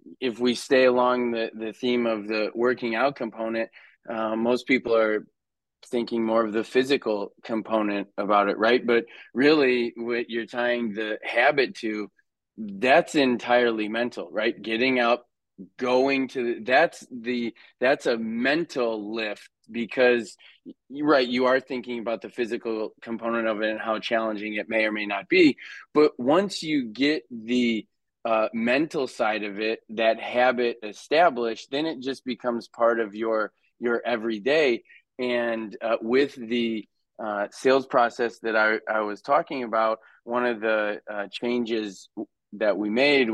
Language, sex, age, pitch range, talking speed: English, male, 20-39, 110-120 Hz, 150 wpm